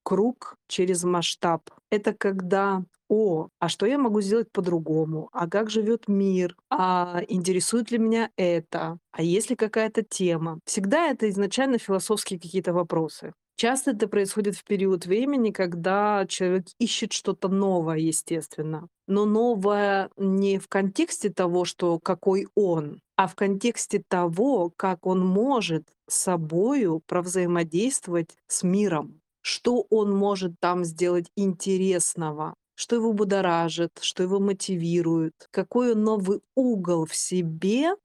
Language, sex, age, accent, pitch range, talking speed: Russian, female, 30-49, native, 175-210 Hz, 130 wpm